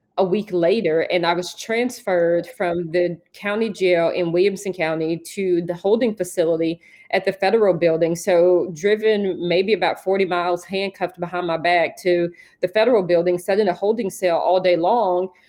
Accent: American